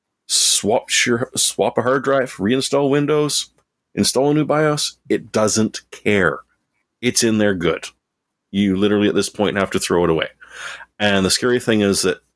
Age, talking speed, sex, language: 30-49, 165 wpm, male, English